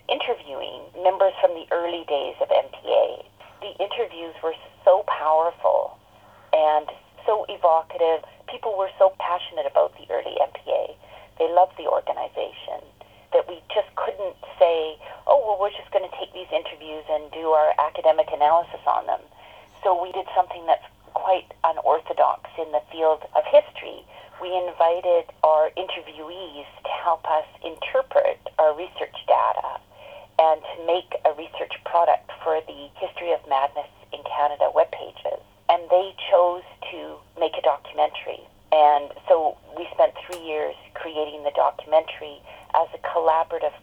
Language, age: English, 40-59